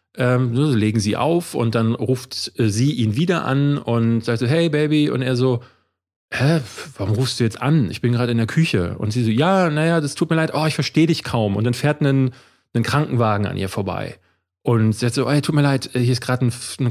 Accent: German